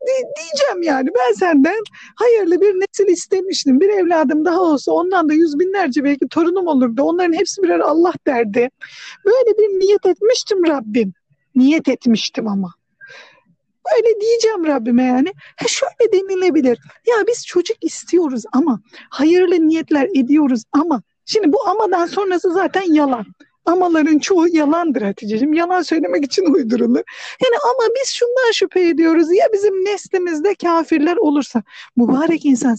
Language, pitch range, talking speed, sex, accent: Turkish, 265-380 Hz, 135 wpm, female, native